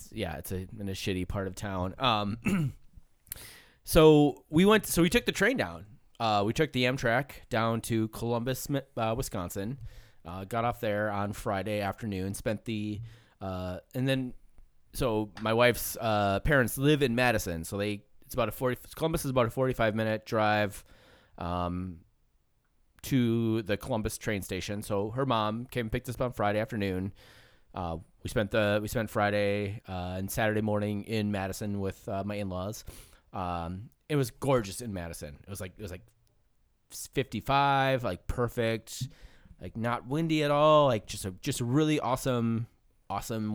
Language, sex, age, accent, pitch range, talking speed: English, male, 20-39, American, 100-125 Hz, 170 wpm